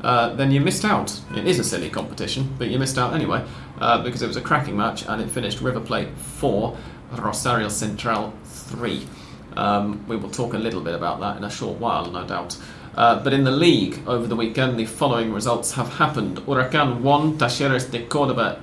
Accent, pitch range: British, 115-145 Hz